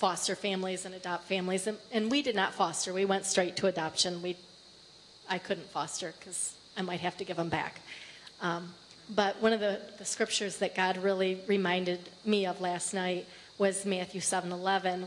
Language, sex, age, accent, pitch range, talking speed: English, female, 30-49, American, 185-205 Hz, 185 wpm